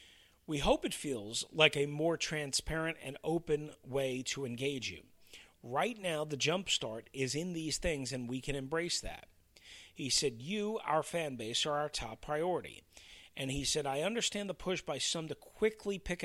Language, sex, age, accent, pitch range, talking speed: English, male, 40-59, American, 120-165 Hz, 180 wpm